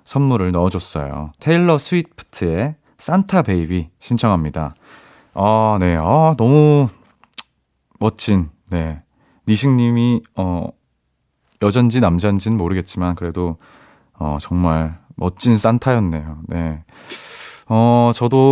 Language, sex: Korean, male